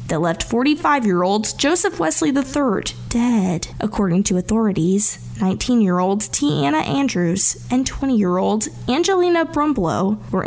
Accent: American